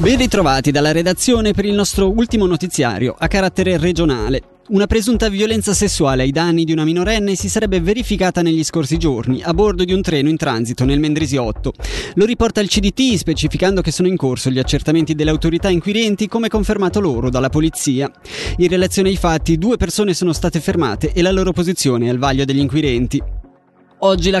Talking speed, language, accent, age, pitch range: 185 wpm, Italian, native, 20-39, 140-185 Hz